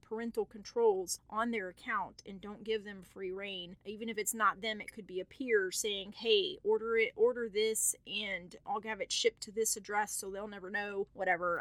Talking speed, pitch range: 205 wpm, 190-225 Hz